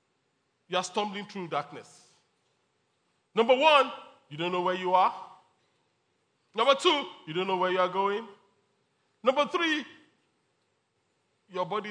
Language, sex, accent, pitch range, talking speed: English, male, Nigerian, 160-200 Hz, 130 wpm